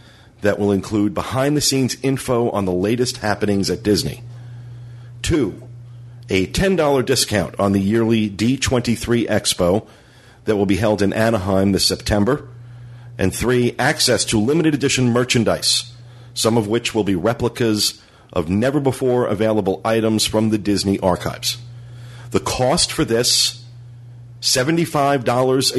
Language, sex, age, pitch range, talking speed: English, male, 50-69, 105-120 Hz, 120 wpm